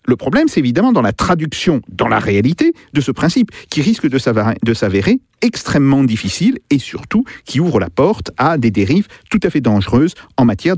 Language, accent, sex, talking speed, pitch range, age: French, French, male, 195 wpm, 130-215 Hz, 50-69